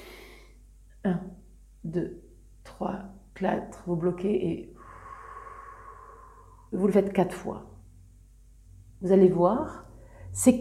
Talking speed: 90 wpm